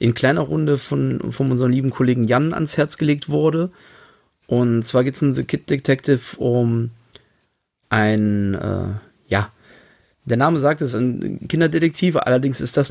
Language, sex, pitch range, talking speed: German, male, 115-140 Hz, 160 wpm